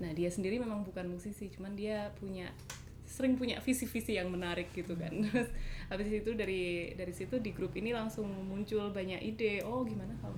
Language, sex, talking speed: Indonesian, female, 185 wpm